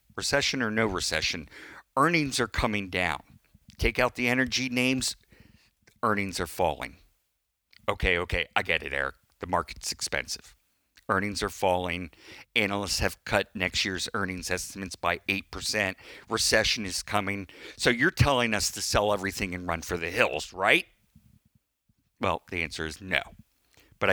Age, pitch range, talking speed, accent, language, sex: 50-69, 90-120 Hz, 145 wpm, American, English, male